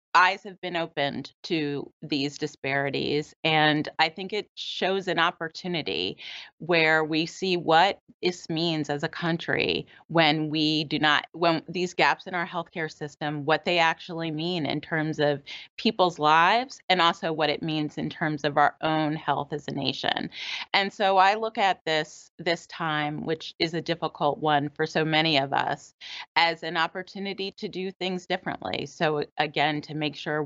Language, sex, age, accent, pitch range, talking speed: English, female, 30-49, American, 150-175 Hz, 170 wpm